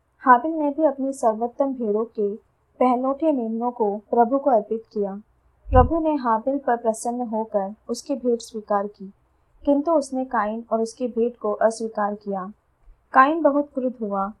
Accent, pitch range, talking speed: native, 215-265 Hz, 155 wpm